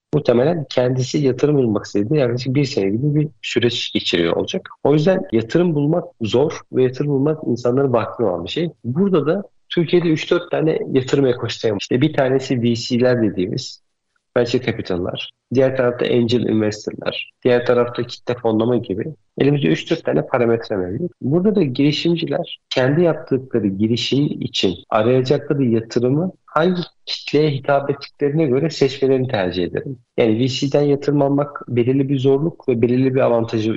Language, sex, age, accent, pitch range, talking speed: Turkish, male, 50-69, native, 120-150 Hz, 145 wpm